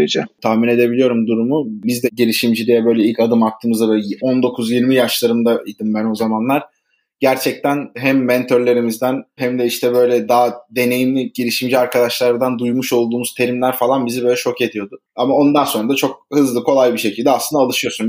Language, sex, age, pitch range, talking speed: Turkish, male, 20-39, 120-150 Hz, 155 wpm